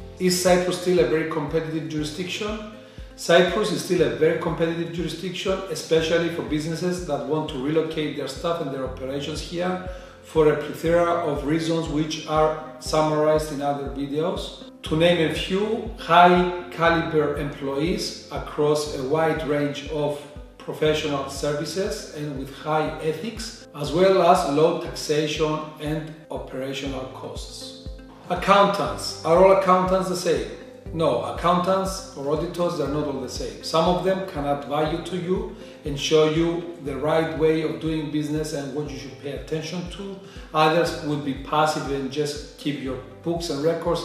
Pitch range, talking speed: 145-175 Hz, 155 wpm